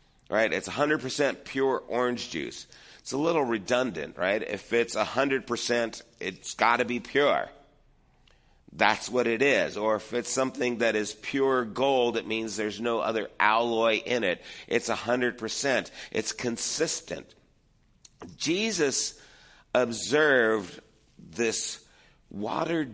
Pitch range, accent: 110-135 Hz, American